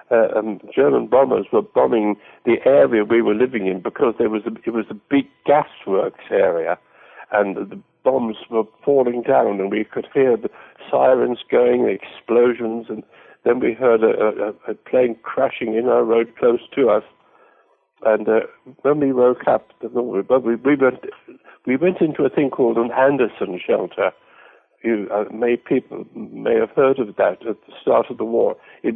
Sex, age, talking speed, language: male, 60-79, 165 wpm, English